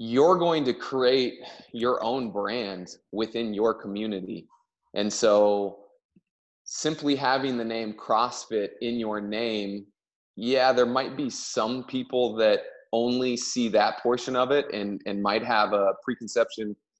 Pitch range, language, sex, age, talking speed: 105-125 Hz, English, male, 20-39, 140 wpm